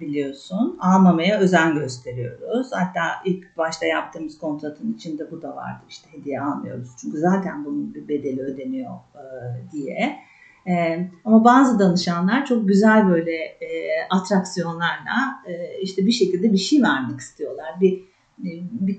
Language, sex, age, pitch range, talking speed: Turkish, female, 50-69, 165-225 Hz, 135 wpm